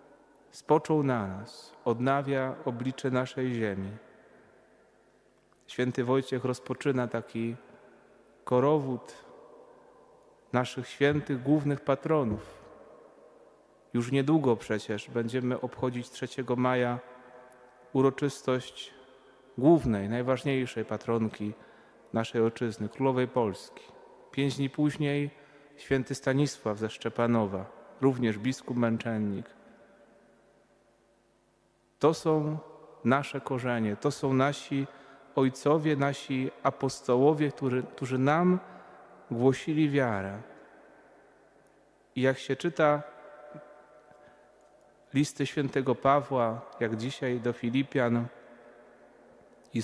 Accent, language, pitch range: native, Polish, 120-150 Hz